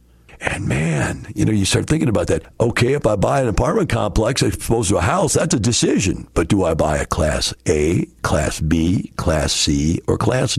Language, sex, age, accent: English, male, 60-79, American